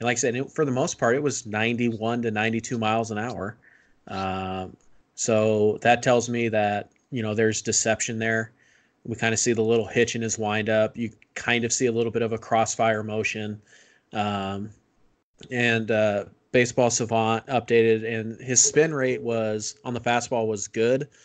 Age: 20-39